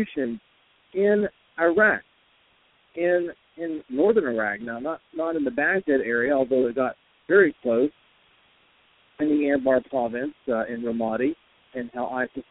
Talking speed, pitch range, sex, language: 135 wpm, 125-180 Hz, male, English